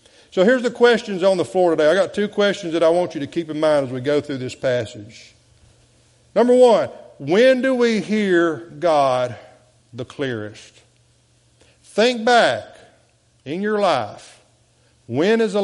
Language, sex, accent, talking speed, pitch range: English, male, American, 165 wpm, 115-170 Hz